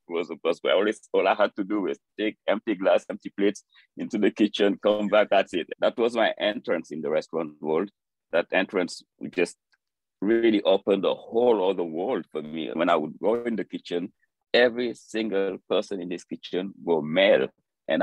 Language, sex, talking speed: English, male, 185 wpm